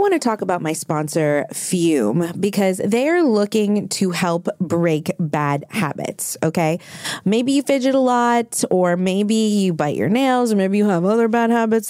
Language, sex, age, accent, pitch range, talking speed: English, female, 20-39, American, 170-220 Hz, 175 wpm